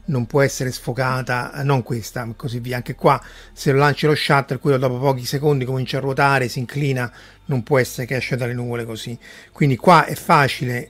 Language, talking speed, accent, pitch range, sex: Italian, 205 wpm, native, 120-140 Hz, male